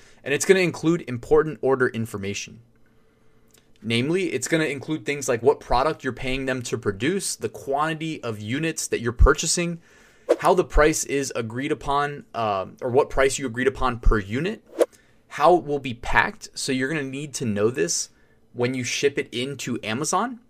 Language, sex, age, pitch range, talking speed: English, male, 20-39, 115-140 Hz, 185 wpm